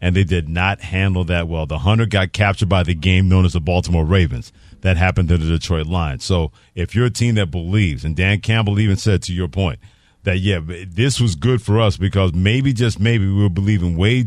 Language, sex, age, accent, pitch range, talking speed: English, male, 40-59, American, 90-110 Hz, 230 wpm